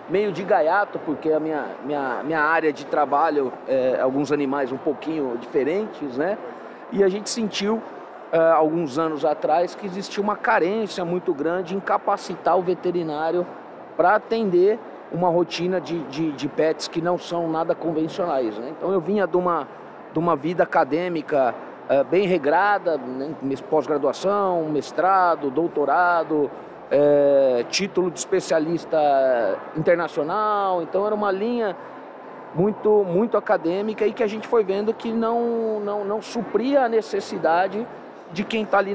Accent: Brazilian